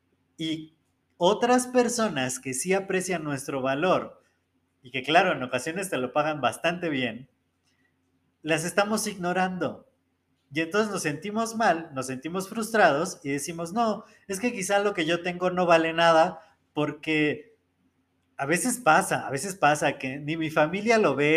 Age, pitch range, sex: 30-49, 135-190 Hz, male